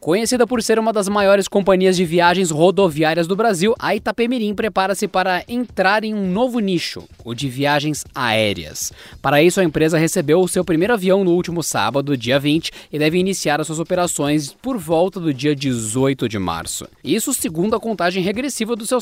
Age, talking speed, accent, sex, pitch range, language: 20-39, 185 wpm, Brazilian, male, 140-205 Hz, Portuguese